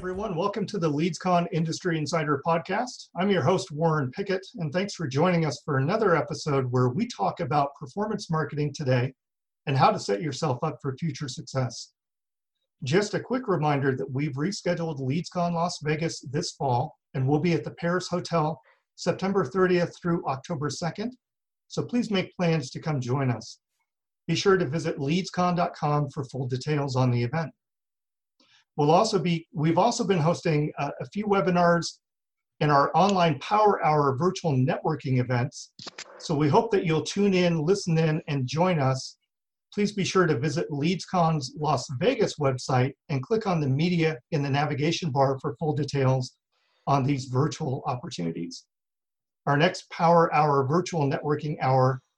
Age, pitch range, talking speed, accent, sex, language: 40-59, 140-180 Hz, 165 wpm, American, male, English